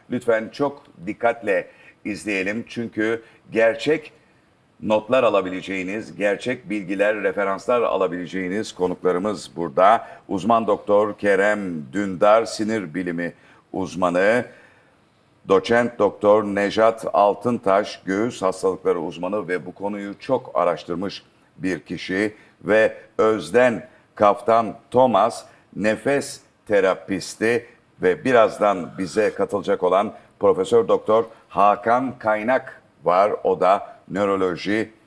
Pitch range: 100-130 Hz